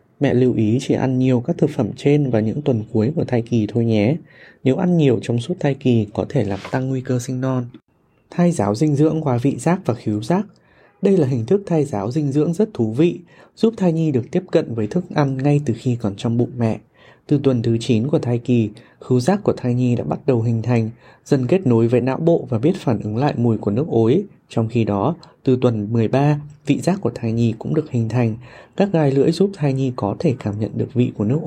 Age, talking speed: 20-39, 250 wpm